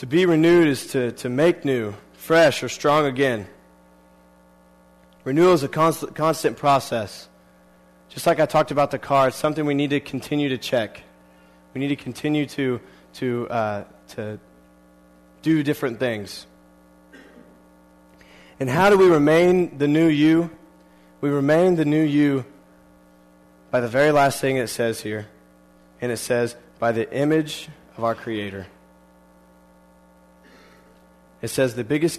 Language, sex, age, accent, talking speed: English, male, 20-39, American, 145 wpm